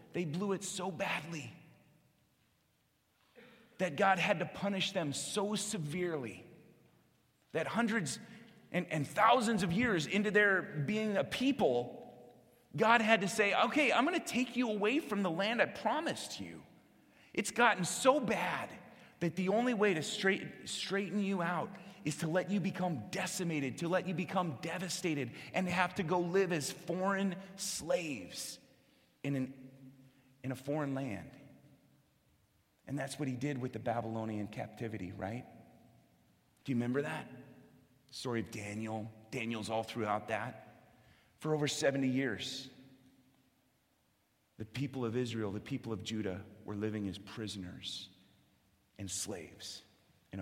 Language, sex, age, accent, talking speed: English, male, 30-49, American, 145 wpm